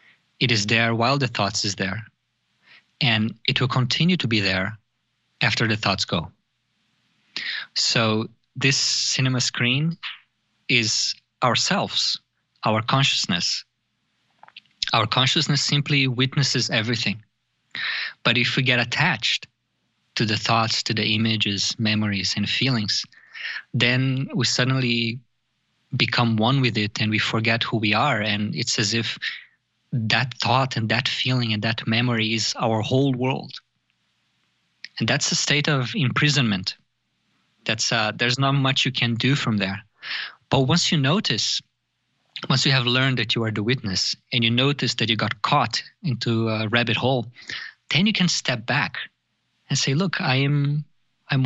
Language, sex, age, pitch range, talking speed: English, male, 20-39, 110-135 Hz, 145 wpm